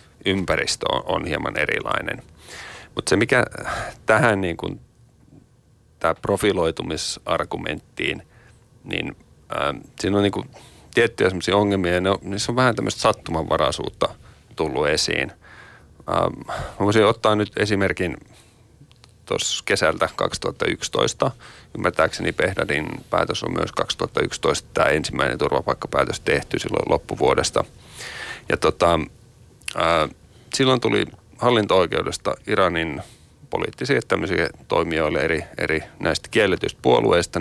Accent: native